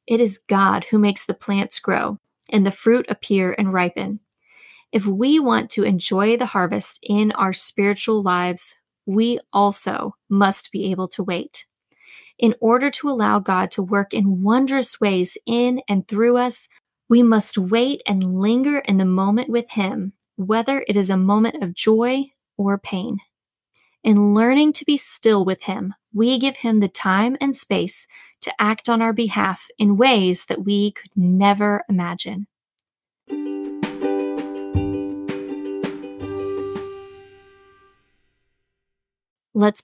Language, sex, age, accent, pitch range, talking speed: English, female, 20-39, American, 190-235 Hz, 140 wpm